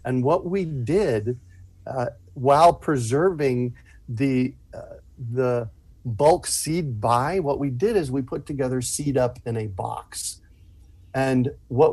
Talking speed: 135 wpm